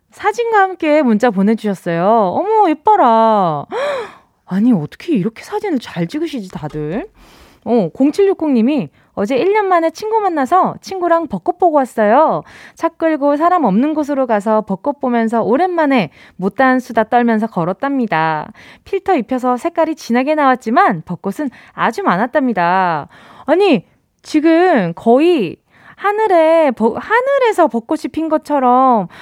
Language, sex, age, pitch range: Korean, female, 20-39, 210-320 Hz